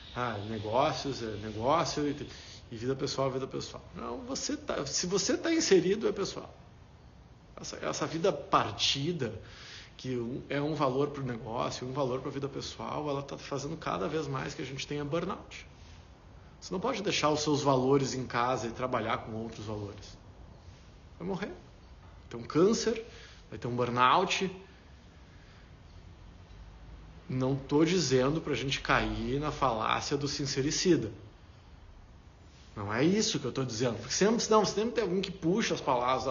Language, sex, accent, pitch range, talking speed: Portuguese, male, Brazilian, 105-155 Hz, 160 wpm